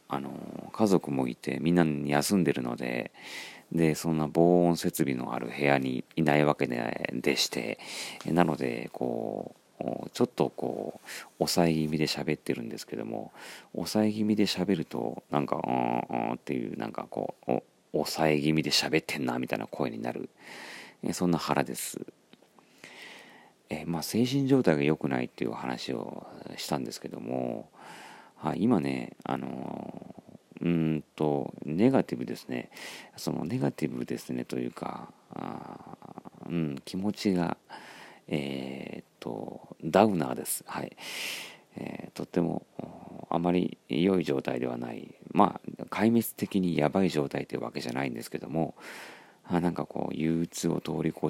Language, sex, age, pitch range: Japanese, male, 40-59, 70-85 Hz